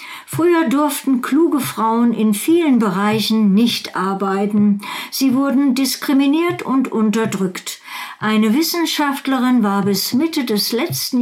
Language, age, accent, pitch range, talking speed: German, 60-79, German, 205-255 Hz, 110 wpm